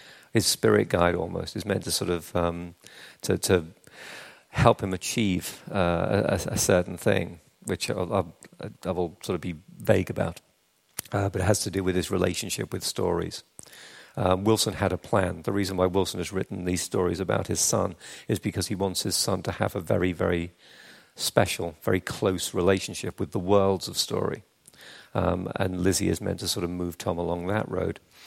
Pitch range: 90-105 Hz